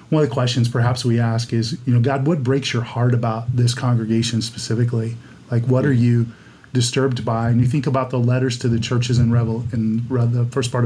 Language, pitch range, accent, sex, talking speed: English, 120-135 Hz, American, male, 215 wpm